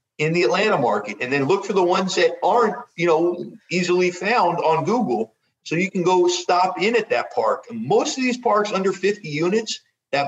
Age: 50-69